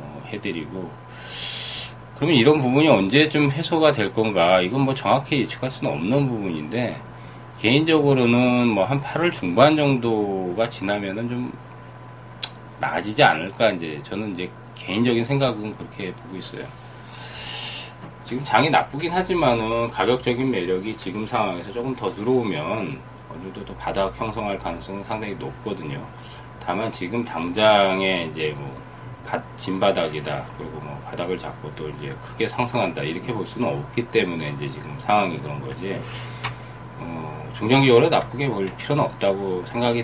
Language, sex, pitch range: Korean, male, 95-130 Hz